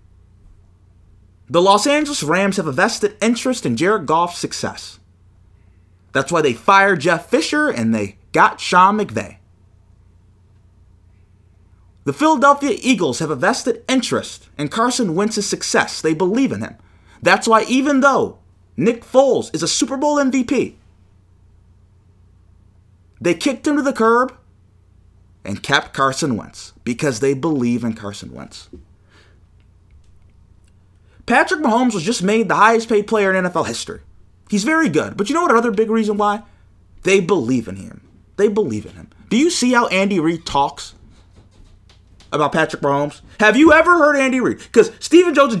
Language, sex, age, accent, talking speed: English, male, 30-49, American, 155 wpm